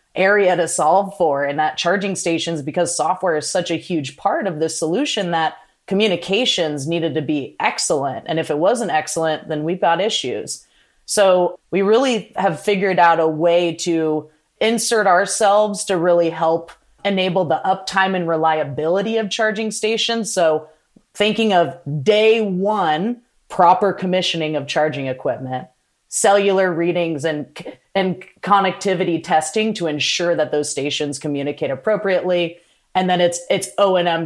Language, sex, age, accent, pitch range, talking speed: English, female, 30-49, American, 155-195 Hz, 150 wpm